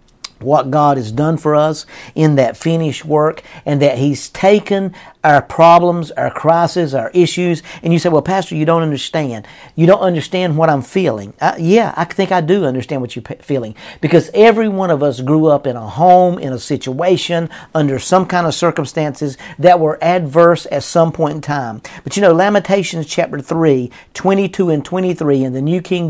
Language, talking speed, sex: English, 190 wpm, male